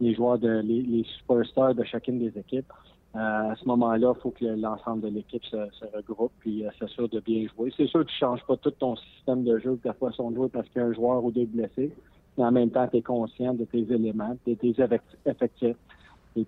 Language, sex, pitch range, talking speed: French, male, 115-125 Hz, 235 wpm